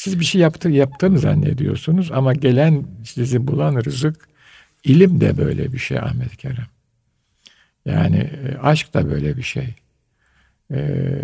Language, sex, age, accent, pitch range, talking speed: Turkish, male, 60-79, native, 125-150 Hz, 130 wpm